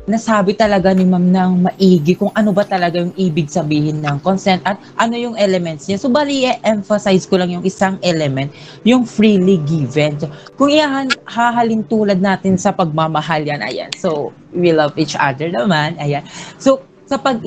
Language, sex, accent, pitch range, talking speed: English, female, Filipino, 170-225 Hz, 170 wpm